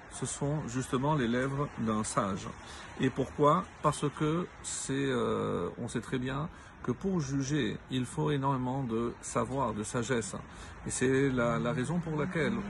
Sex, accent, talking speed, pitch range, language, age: male, French, 155 wpm, 120-150 Hz, French, 50-69